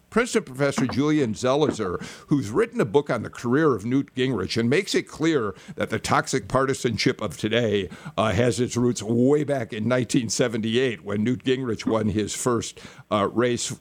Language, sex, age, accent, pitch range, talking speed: English, male, 50-69, American, 105-140 Hz, 175 wpm